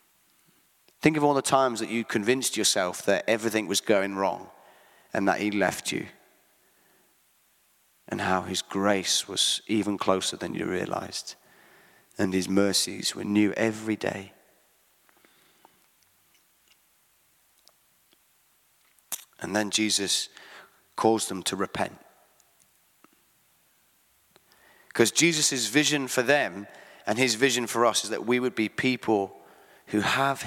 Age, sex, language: 30-49, male, English